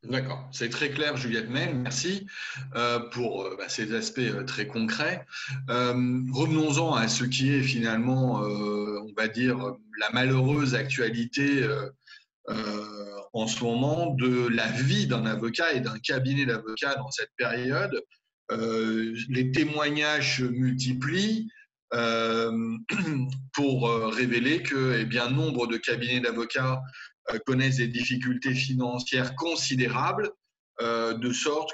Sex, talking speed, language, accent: male, 110 wpm, French, French